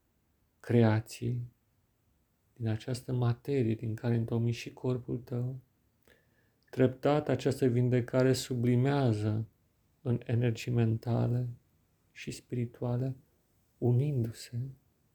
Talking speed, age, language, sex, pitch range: 80 wpm, 40-59, Italian, male, 110-125 Hz